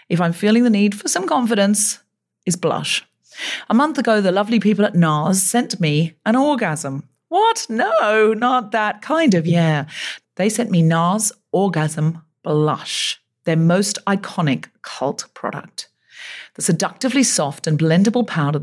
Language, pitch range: English, 155-230 Hz